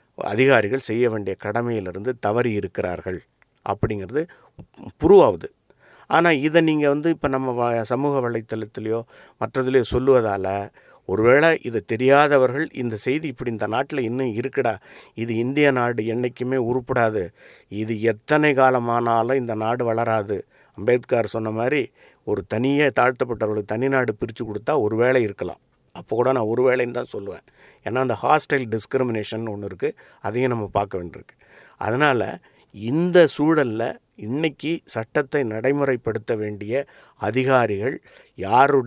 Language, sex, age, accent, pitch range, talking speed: English, male, 50-69, Indian, 110-135 Hz, 105 wpm